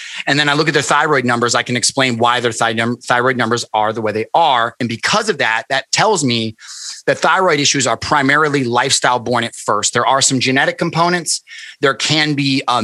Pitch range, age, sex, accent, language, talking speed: 120-165 Hz, 30-49, male, American, English, 205 wpm